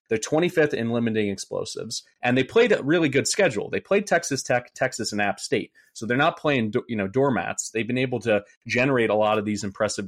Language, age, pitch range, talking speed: English, 30-49, 105-125 Hz, 220 wpm